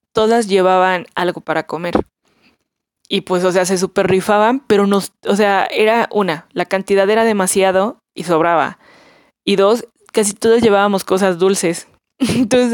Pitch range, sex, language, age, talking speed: 175-210 Hz, female, Spanish, 20-39, 150 wpm